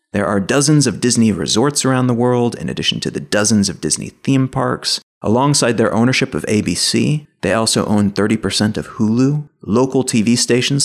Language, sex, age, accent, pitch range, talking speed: English, male, 30-49, American, 105-130 Hz, 175 wpm